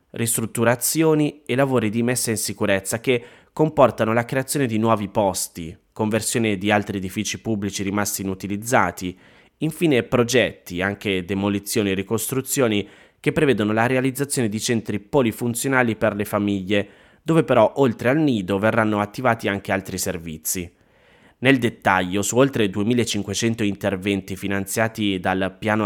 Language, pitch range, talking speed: Italian, 100-120 Hz, 130 wpm